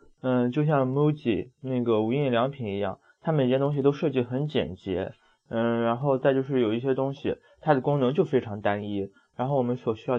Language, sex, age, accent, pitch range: Chinese, male, 20-39, native, 115-140 Hz